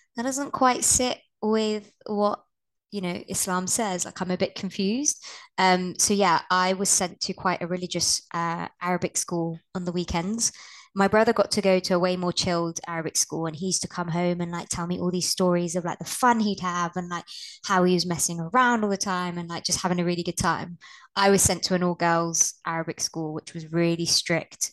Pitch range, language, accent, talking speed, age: 170-200 Hz, English, British, 225 wpm, 20-39